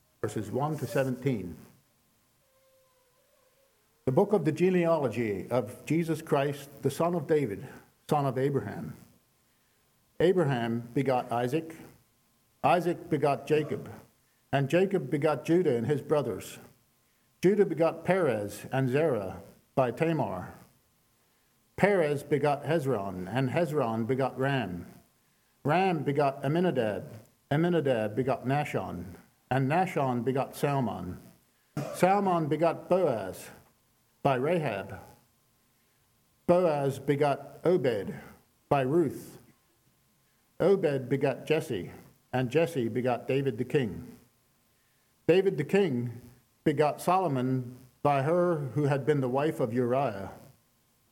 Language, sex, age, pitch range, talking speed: English, male, 50-69, 125-160 Hz, 105 wpm